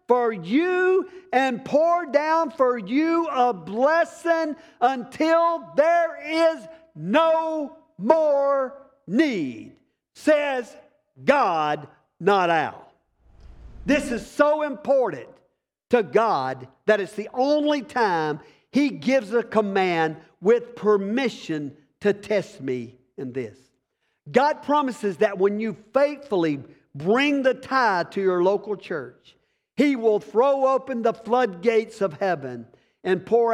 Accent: American